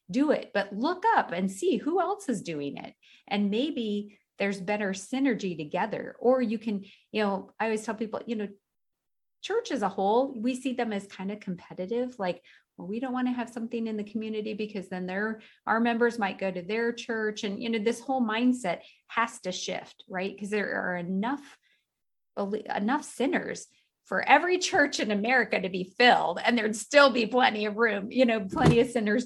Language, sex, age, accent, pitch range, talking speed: English, female, 30-49, American, 190-240 Hz, 200 wpm